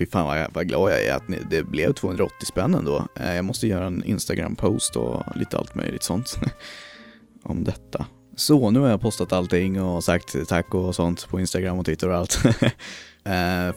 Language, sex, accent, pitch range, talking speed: Swedish, male, native, 85-115 Hz, 200 wpm